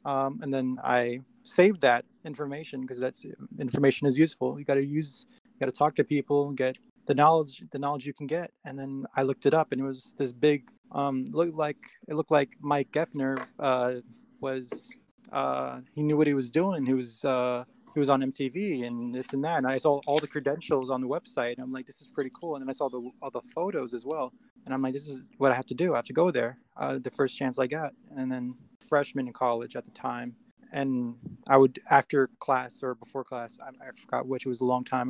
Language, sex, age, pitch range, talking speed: English, male, 20-39, 125-145 Hz, 240 wpm